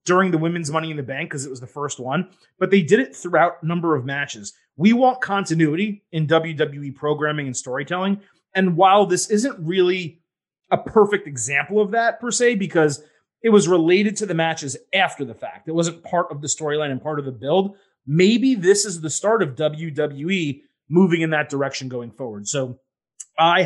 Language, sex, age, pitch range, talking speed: English, male, 30-49, 145-180 Hz, 200 wpm